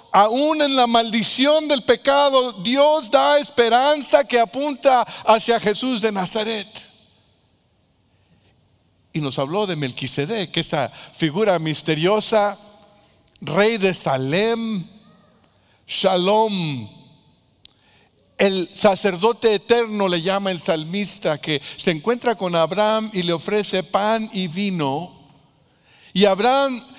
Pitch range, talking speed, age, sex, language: 155-210 Hz, 105 wpm, 60-79, male, Spanish